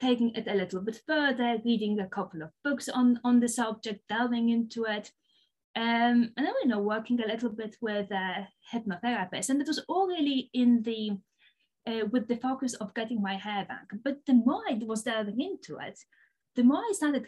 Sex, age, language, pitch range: female, 20-39, English, 215-260 Hz